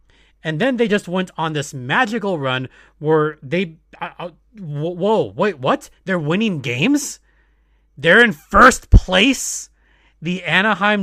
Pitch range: 155-220 Hz